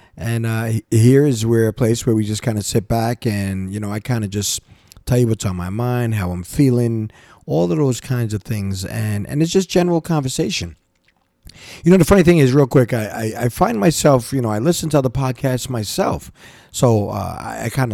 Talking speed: 225 wpm